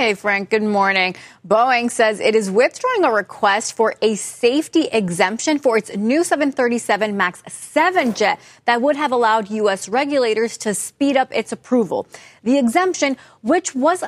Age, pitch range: 30-49, 205-280 Hz